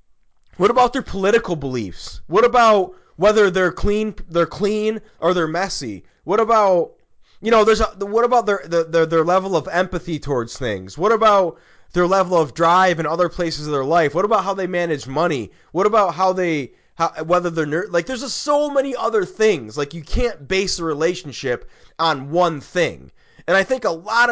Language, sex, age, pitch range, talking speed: English, male, 20-39, 155-205 Hz, 190 wpm